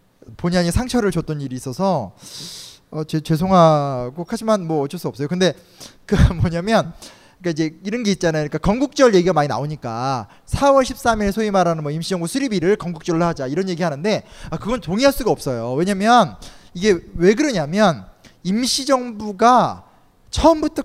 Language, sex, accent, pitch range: Korean, male, native, 170-235 Hz